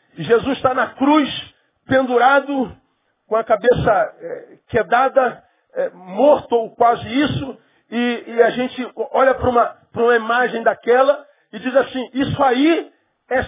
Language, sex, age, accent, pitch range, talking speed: Portuguese, male, 40-59, Brazilian, 230-295 Hz, 140 wpm